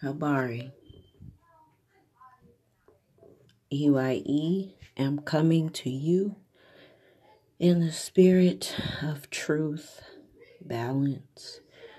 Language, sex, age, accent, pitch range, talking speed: English, female, 40-59, American, 130-180 Hz, 60 wpm